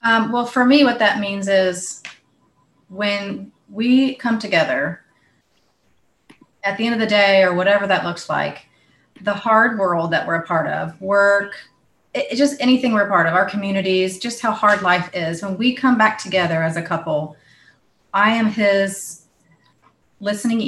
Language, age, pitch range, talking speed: English, 30-49, 185-230 Hz, 170 wpm